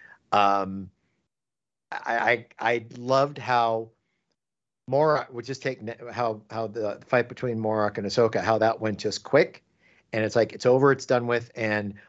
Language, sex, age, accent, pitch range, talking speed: English, male, 50-69, American, 110-140 Hz, 160 wpm